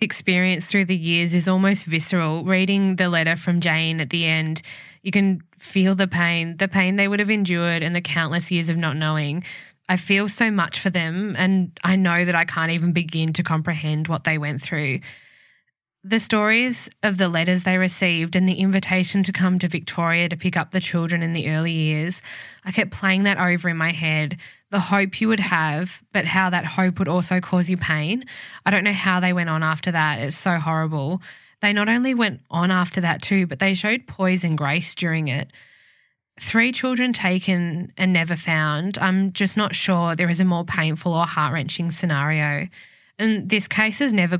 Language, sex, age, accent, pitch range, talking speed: English, female, 10-29, Australian, 160-190 Hz, 200 wpm